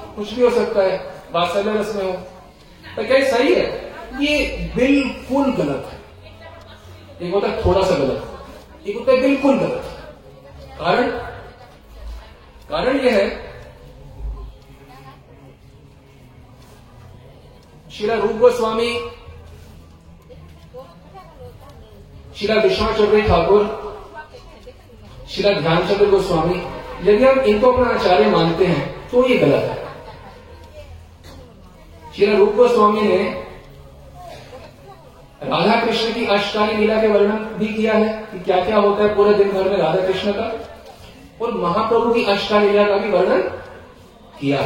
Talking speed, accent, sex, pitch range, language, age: 115 wpm, native, male, 145-220 Hz, Hindi, 40-59